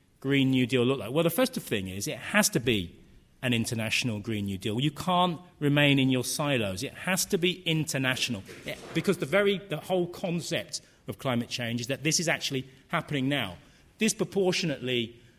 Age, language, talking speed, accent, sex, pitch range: 40-59, English, 185 wpm, British, male, 115-150 Hz